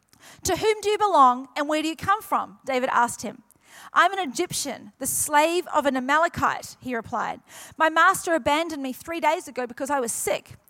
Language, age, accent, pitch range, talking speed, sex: English, 30-49, Australian, 255-330 Hz, 195 wpm, female